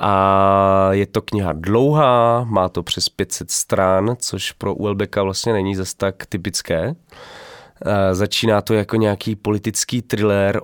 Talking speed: 140 wpm